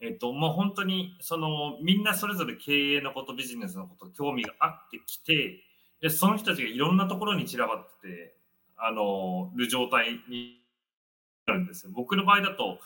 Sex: male